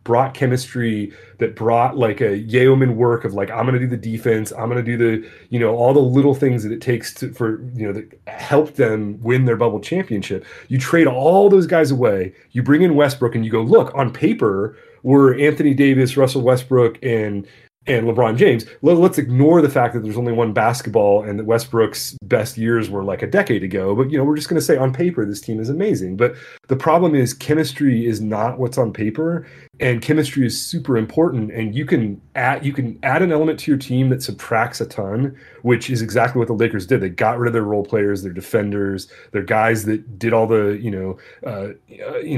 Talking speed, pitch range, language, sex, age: 220 wpm, 110-135 Hz, English, male, 30-49